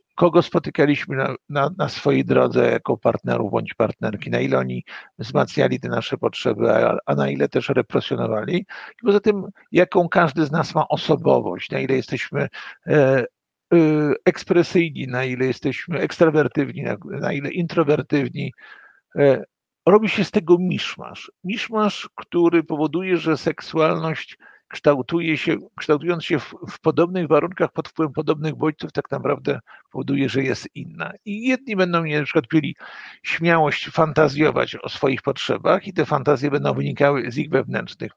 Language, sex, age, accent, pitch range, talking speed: Polish, male, 50-69, native, 150-180 Hz, 145 wpm